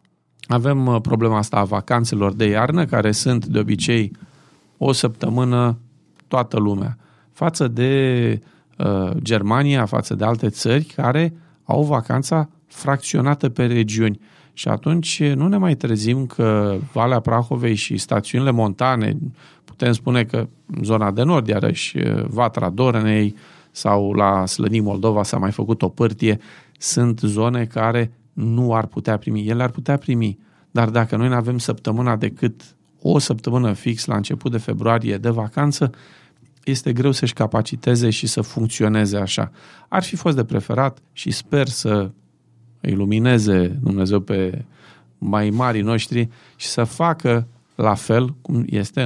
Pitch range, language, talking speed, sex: 110-140 Hz, Romanian, 140 wpm, male